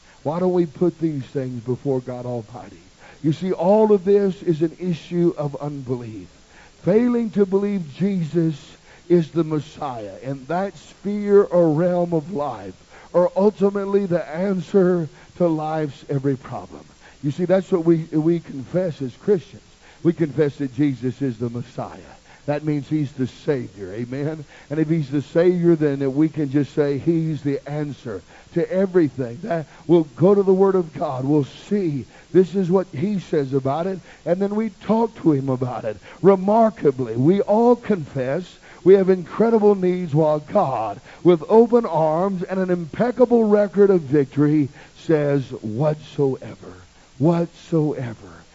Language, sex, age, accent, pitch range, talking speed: English, male, 50-69, American, 140-190 Hz, 155 wpm